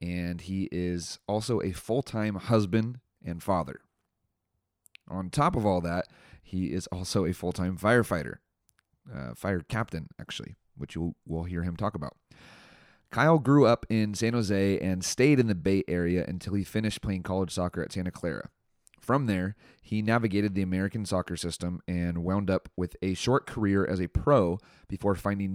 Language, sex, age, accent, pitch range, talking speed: English, male, 30-49, American, 90-105 Hz, 165 wpm